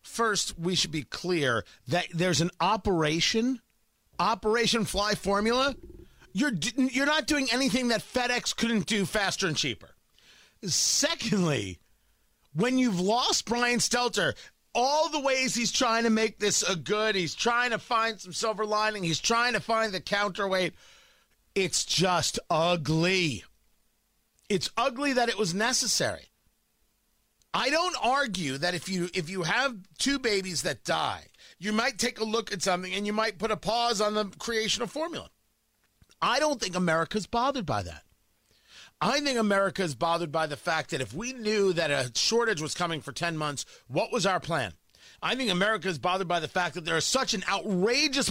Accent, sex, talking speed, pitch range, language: American, male, 170 wpm, 175-235 Hz, English